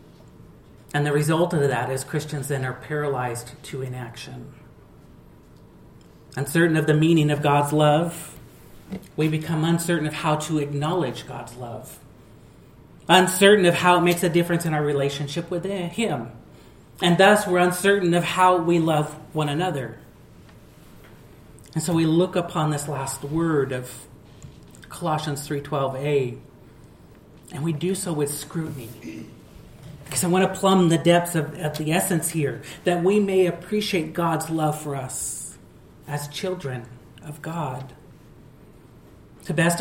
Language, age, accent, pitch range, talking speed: English, 40-59, American, 145-175 Hz, 140 wpm